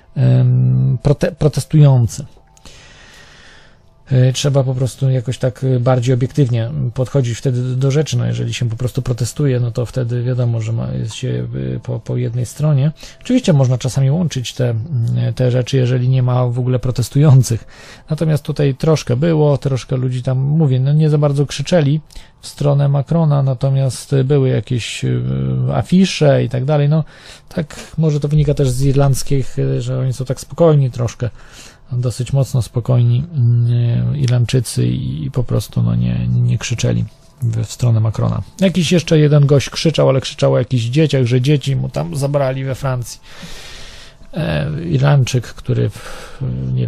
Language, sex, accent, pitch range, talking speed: Polish, male, native, 120-140 Hz, 150 wpm